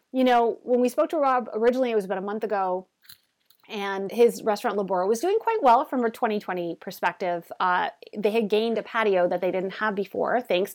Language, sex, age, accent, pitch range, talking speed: English, female, 30-49, American, 180-235 Hz, 210 wpm